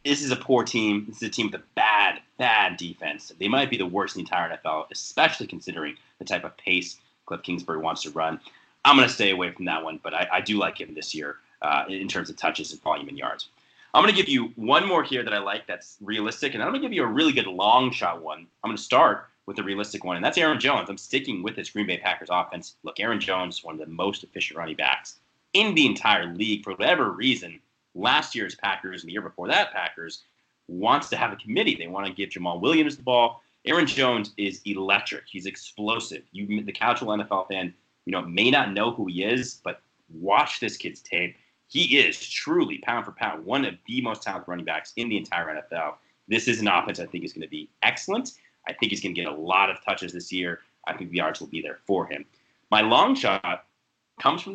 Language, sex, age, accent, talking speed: English, male, 30-49, American, 245 wpm